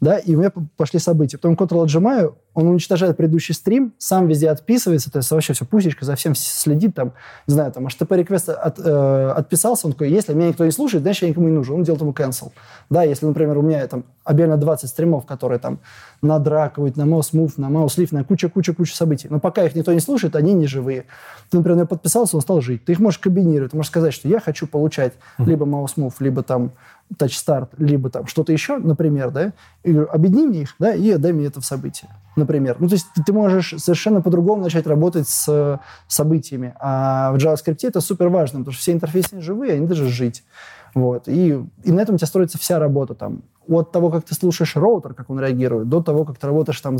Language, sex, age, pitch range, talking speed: Russian, male, 20-39, 135-170 Hz, 220 wpm